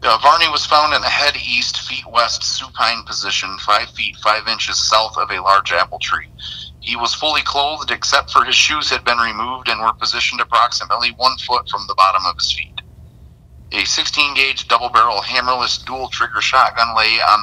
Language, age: English, 30-49